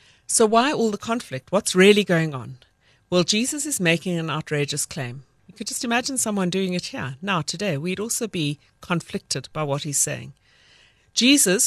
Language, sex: English, female